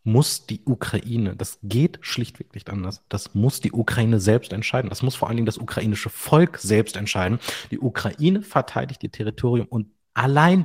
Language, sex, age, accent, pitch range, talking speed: German, male, 30-49, German, 115-155 Hz, 175 wpm